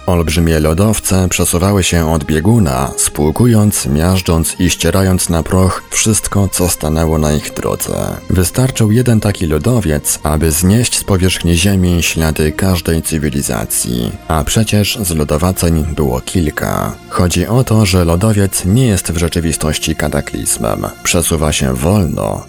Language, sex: Polish, male